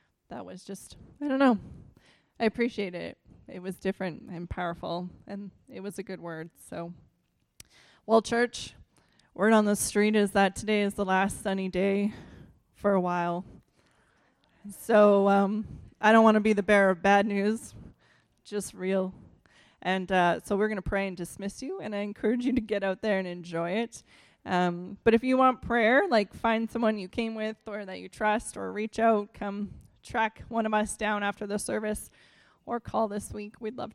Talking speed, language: 190 wpm, English